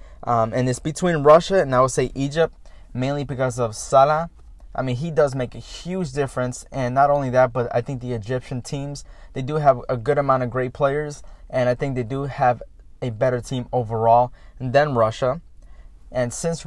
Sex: male